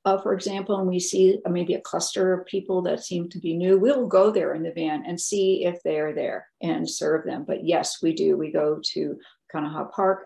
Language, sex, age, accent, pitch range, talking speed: English, female, 50-69, American, 165-195 Hz, 235 wpm